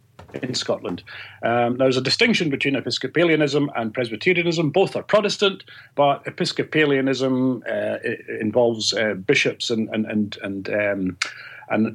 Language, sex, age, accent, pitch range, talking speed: English, male, 40-59, British, 120-160 Hz, 130 wpm